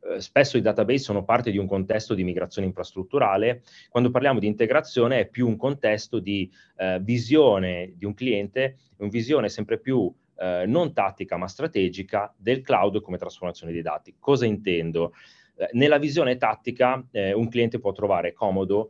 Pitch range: 90-115 Hz